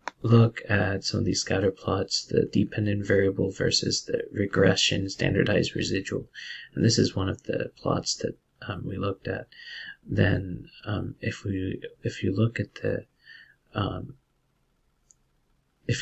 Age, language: 40-59, English